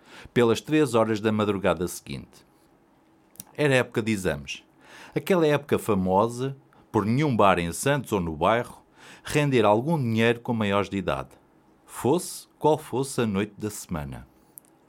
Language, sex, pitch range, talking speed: Portuguese, male, 95-130 Hz, 140 wpm